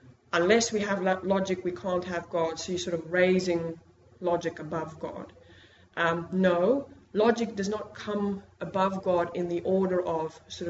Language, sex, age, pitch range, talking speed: English, female, 20-39, 170-205 Hz, 165 wpm